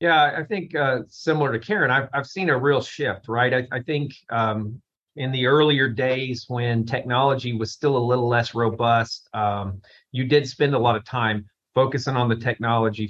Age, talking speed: 40-59, 195 wpm